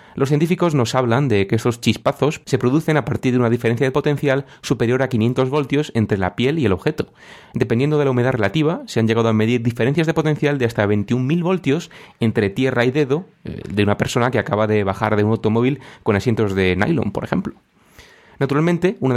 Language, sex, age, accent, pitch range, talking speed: Spanish, male, 30-49, Spanish, 110-140 Hz, 205 wpm